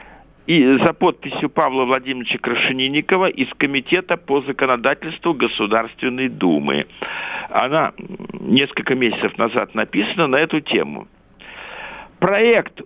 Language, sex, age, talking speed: Russian, male, 50-69, 100 wpm